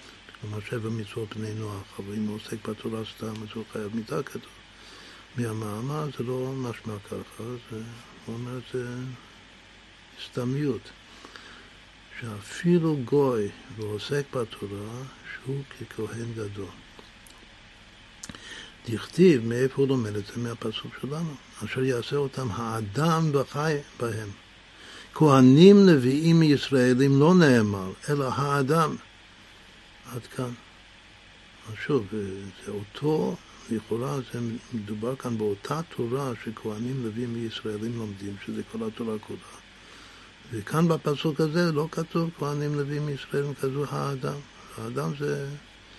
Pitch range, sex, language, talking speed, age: 105-135 Hz, male, Hebrew, 105 wpm, 60-79